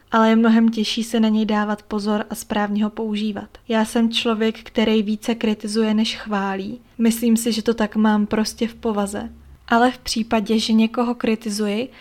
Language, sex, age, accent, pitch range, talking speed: Czech, female, 20-39, native, 215-230 Hz, 180 wpm